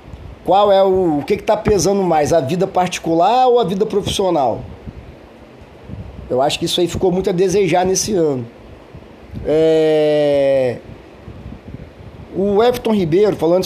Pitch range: 165-205 Hz